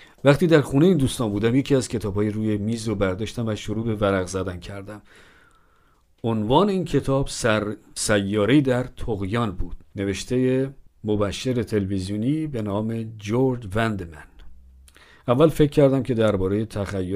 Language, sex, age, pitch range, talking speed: Persian, male, 50-69, 100-120 Hz, 140 wpm